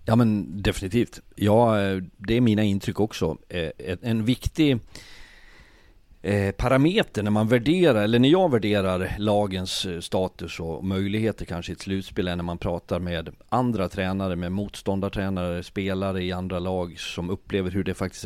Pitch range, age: 90-105 Hz, 40-59